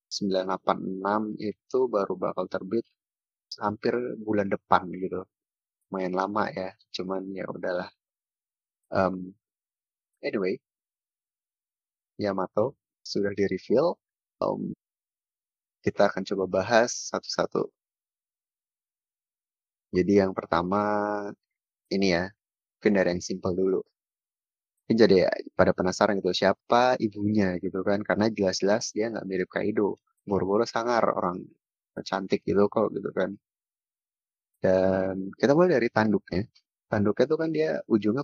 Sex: male